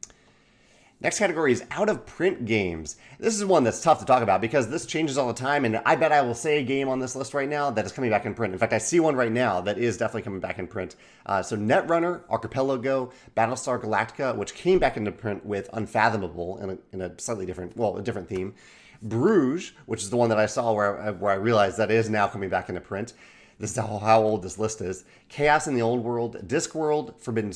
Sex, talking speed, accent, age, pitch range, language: male, 235 wpm, American, 30-49, 100-135 Hz, English